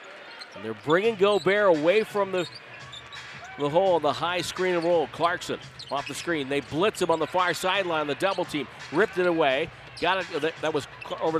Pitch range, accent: 150-180 Hz, American